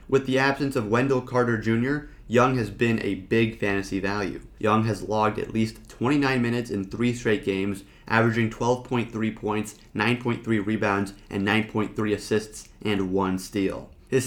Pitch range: 110-130 Hz